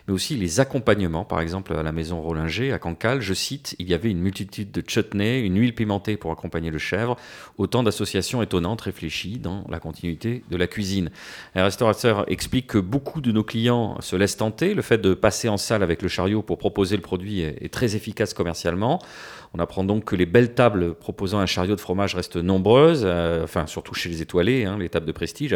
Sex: male